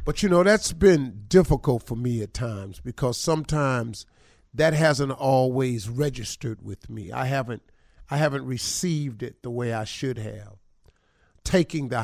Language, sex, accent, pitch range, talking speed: English, male, American, 120-195 Hz, 155 wpm